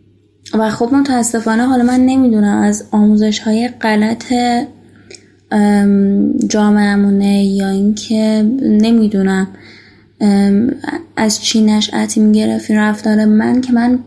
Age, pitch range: 10-29, 200-235 Hz